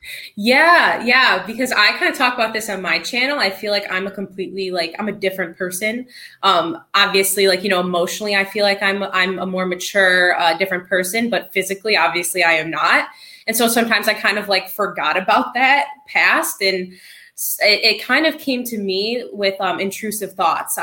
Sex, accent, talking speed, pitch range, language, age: female, American, 200 wpm, 180-205 Hz, English, 20-39